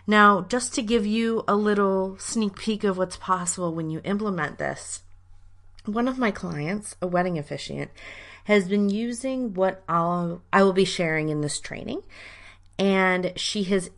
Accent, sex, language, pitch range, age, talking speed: American, female, English, 160-210 Hz, 30-49, 160 wpm